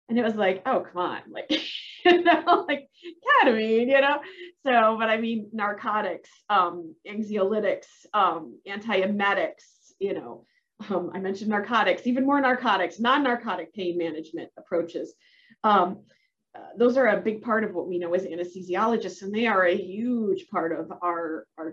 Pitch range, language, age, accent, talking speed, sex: 175-225 Hz, English, 30-49, American, 165 wpm, female